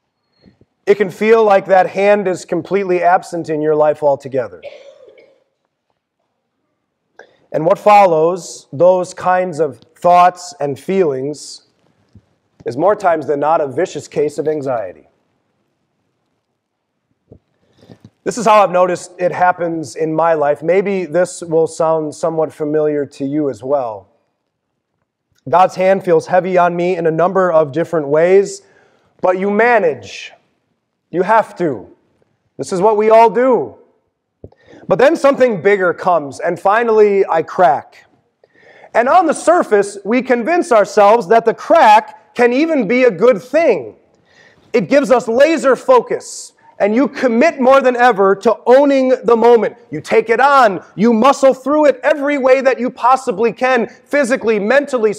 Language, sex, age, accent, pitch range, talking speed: English, male, 30-49, American, 175-255 Hz, 145 wpm